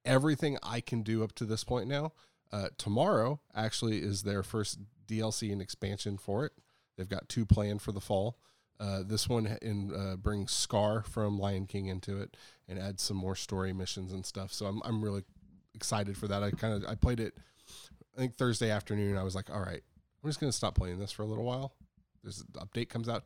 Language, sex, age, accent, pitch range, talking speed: English, male, 20-39, American, 95-115 Hz, 215 wpm